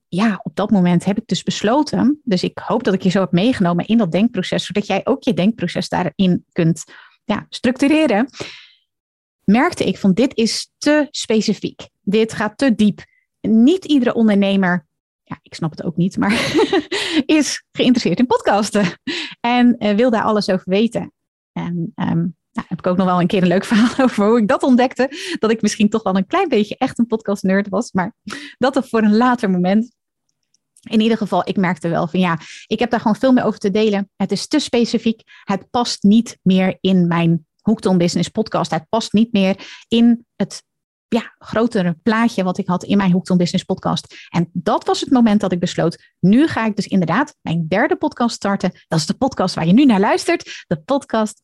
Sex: female